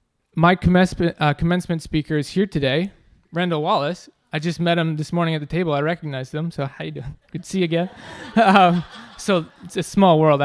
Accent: American